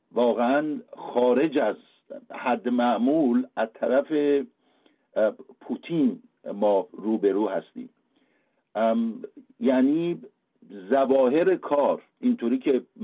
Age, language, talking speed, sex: 50-69, Persian, 85 wpm, male